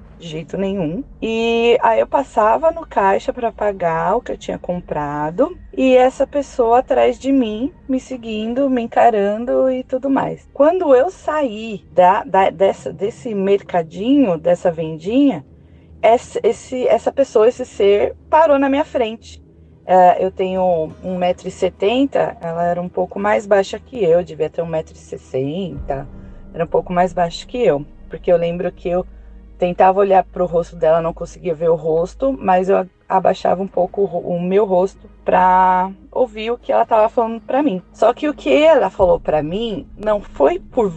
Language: Portuguese